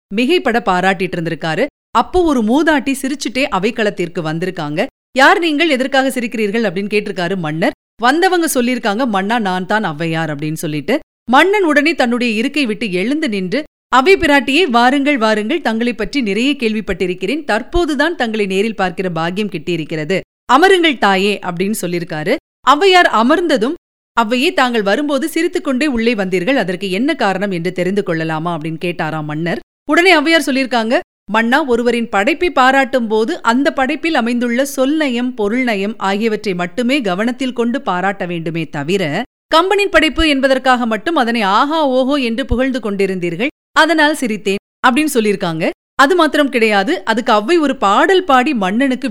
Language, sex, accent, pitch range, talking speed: Tamil, female, native, 195-290 Hz, 130 wpm